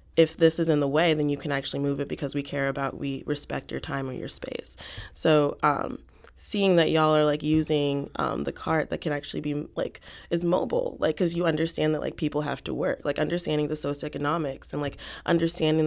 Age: 20-39